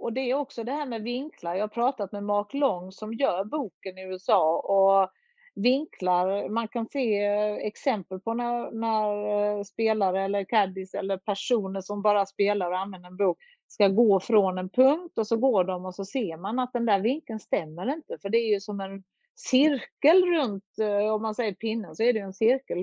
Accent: Swedish